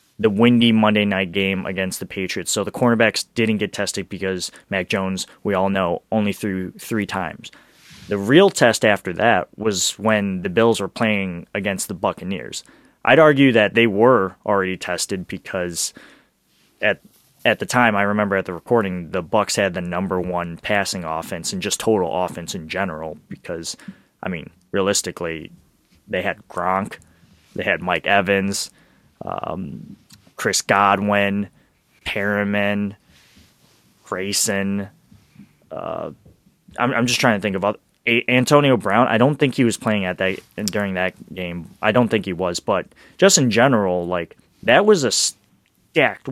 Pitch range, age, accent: 95-115 Hz, 20-39, American